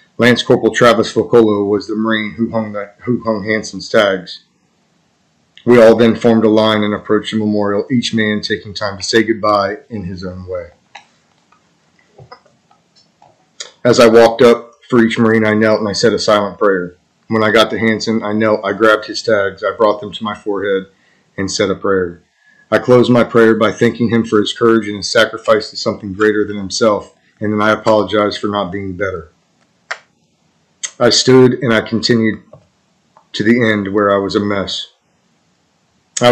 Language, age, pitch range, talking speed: English, 30-49, 105-115 Hz, 180 wpm